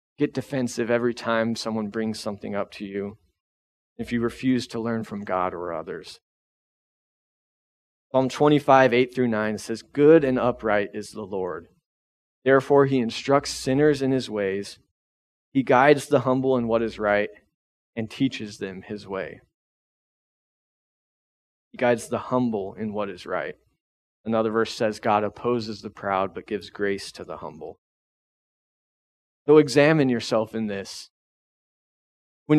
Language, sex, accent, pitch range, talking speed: English, male, American, 105-130 Hz, 140 wpm